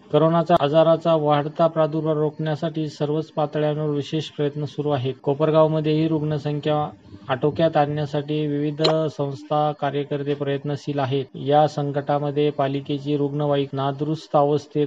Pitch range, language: 145-155 Hz, Marathi